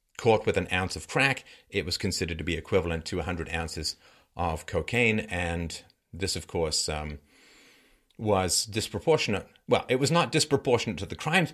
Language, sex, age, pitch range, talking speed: English, male, 40-59, 80-120 Hz, 165 wpm